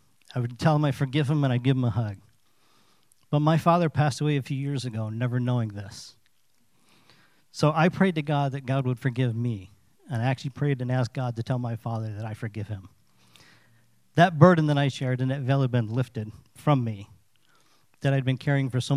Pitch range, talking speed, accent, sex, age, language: 120-145 Hz, 220 wpm, American, male, 40-59, English